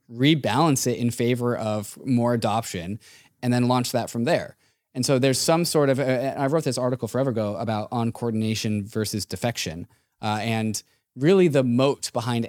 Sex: male